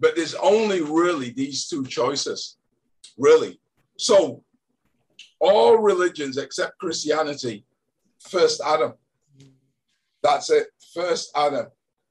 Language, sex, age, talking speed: English, male, 50-69, 95 wpm